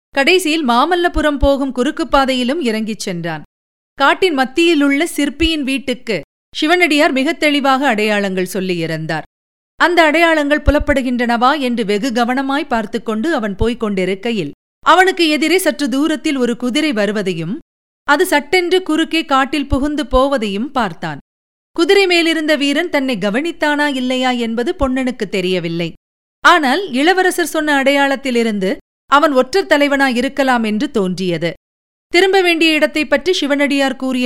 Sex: female